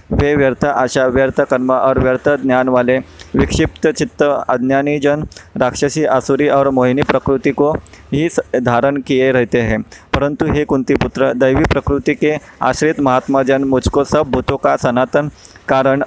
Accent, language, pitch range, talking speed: native, Hindi, 125-140 Hz, 145 wpm